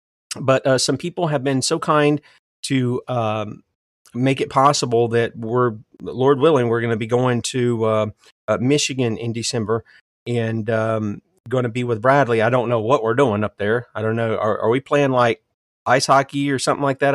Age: 40-59